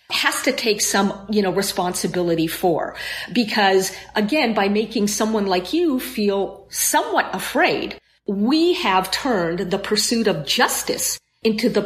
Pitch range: 190-275 Hz